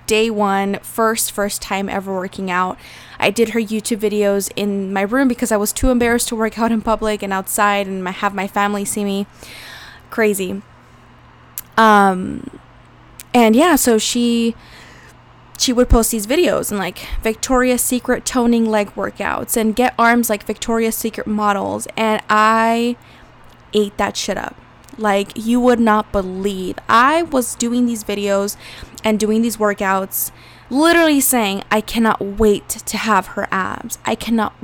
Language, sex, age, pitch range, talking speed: English, female, 20-39, 205-235 Hz, 155 wpm